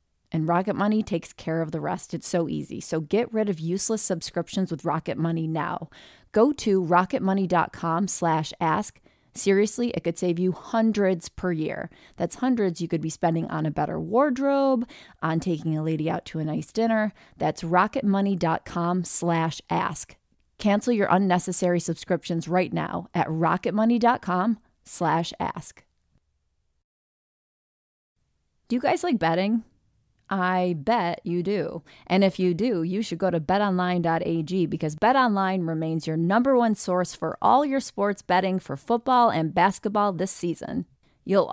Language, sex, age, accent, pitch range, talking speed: English, female, 20-39, American, 165-215 Hz, 145 wpm